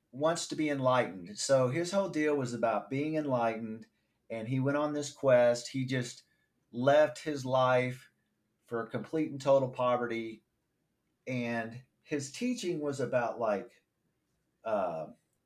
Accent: American